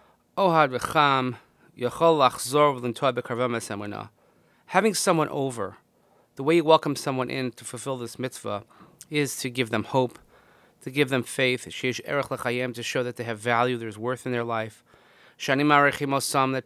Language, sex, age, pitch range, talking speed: English, male, 30-49, 120-145 Hz, 125 wpm